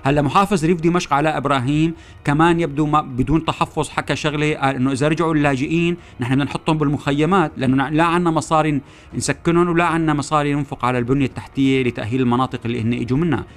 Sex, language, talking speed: male, Arabic, 175 wpm